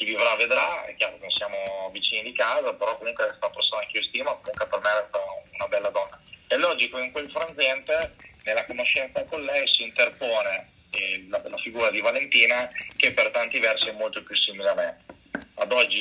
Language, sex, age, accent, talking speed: Italian, male, 30-49, native, 200 wpm